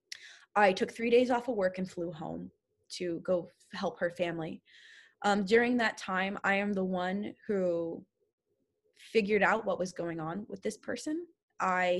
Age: 20-39